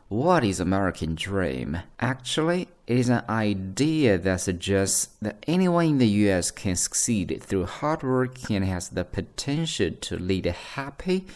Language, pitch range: Chinese, 95-135 Hz